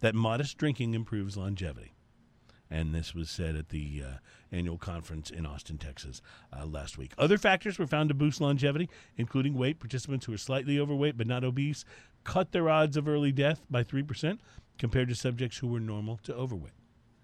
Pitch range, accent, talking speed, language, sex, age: 105-145 Hz, American, 185 wpm, English, male, 40-59